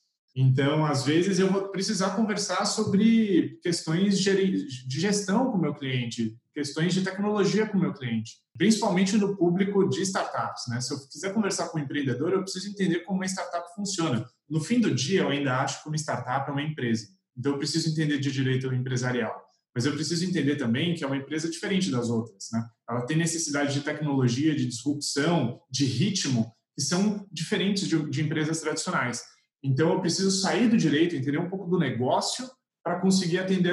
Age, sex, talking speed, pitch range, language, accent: 20-39, male, 185 wpm, 135-185 Hz, Portuguese, Brazilian